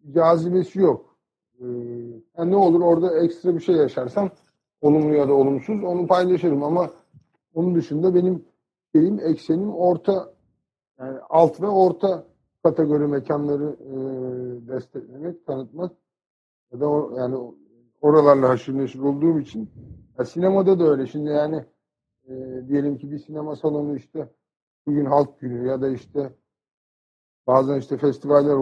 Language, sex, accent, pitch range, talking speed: Turkish, male, native, 130-160 Hz, 130 wpm